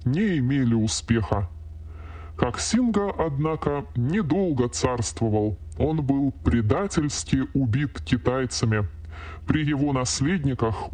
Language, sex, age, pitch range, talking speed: Russian, female, 20-39, 110-145 Hz, 80 wpm